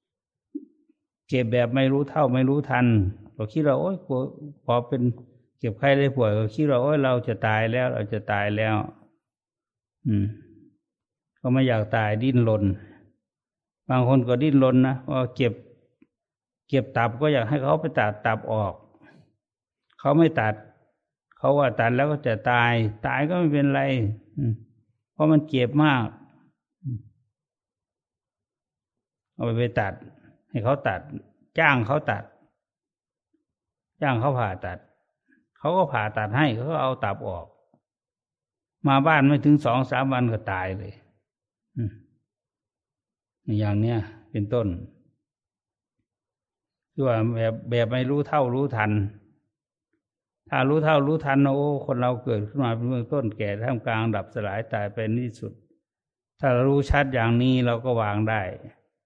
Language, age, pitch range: English, 60-79, 110-140 Hz